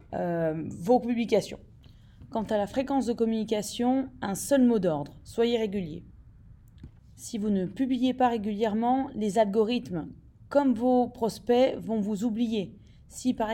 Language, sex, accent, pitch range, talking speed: French, female, French, 215-255 Hz, 135 wpm